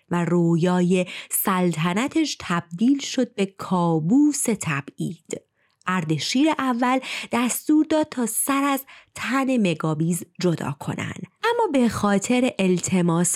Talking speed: 105 wpm